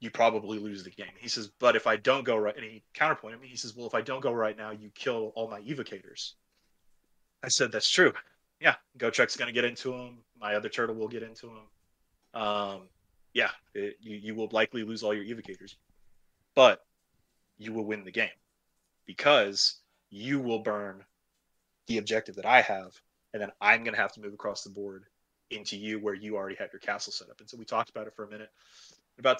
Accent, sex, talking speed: American, male, 215 wpm